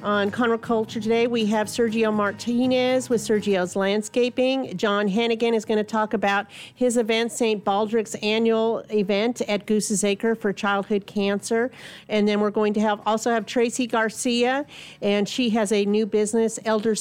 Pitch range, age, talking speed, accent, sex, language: 190-225 Hz, 40-59, 165 wpm, American, female, English